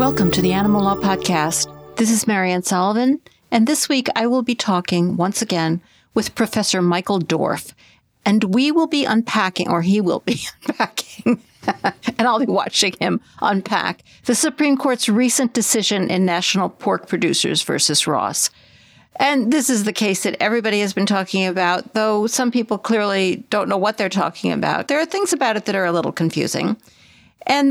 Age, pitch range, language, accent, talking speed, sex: 60-79, 190-255 Hz, English, American, 180 wpm, female